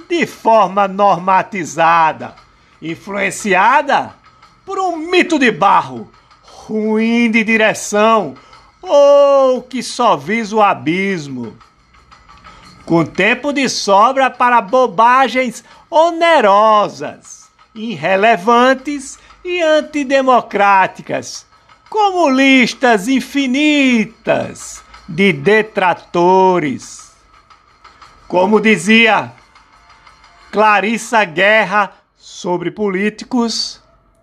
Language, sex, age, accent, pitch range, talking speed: Portuguese, male, 60-79, Brazilian, 190-260 Hz, 70 wpm